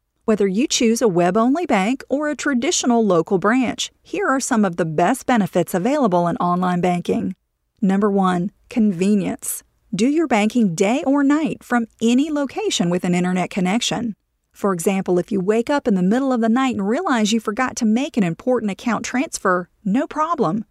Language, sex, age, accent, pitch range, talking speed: English, female, 40-59, American, 195-255 Hz, 180 wpm